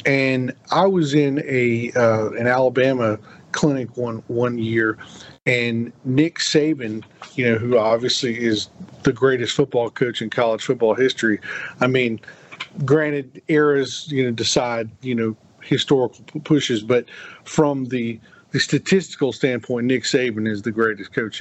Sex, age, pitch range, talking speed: male, 40-59, 120-150 Hz, 145 wpm